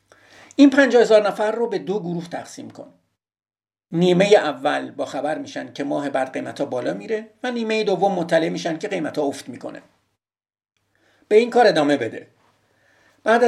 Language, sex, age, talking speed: Persian, male, 50-69, 160 wpm